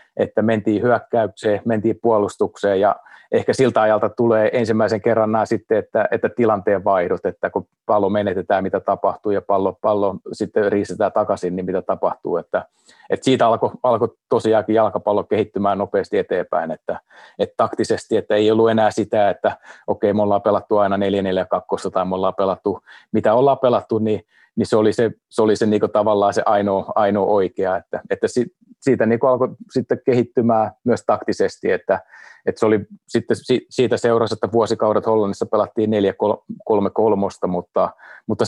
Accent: native